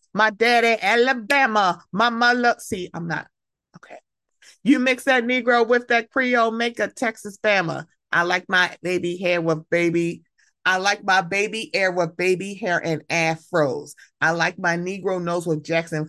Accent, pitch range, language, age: American, 160-220 Hz, English, 30-49